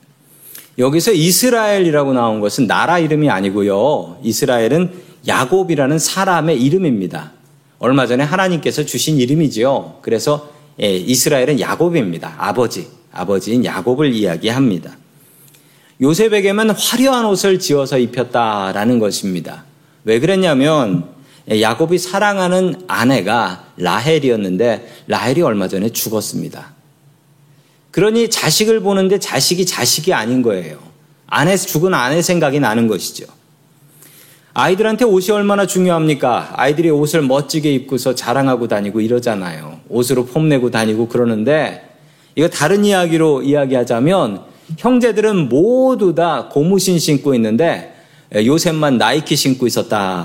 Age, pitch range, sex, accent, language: 40-59, 125-180 Hz, male, native, Korean